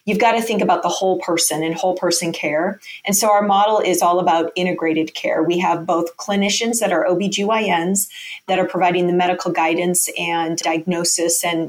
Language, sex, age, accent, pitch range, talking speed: English, female, 30-49, American, 170-200 Hz, 190 wpm